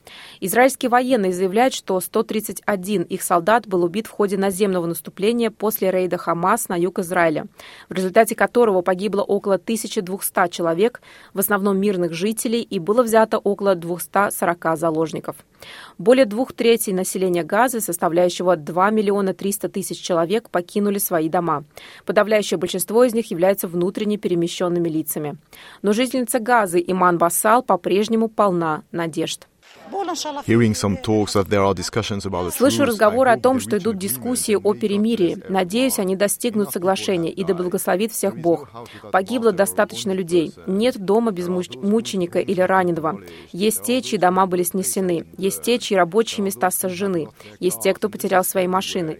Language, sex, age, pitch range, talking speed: Russian, female, 20-39, 180-215 Hz, 135 wpm